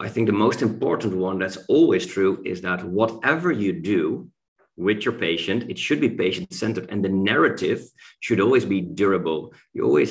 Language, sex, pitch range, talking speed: English, male, 95-110 Hz, 180 wpm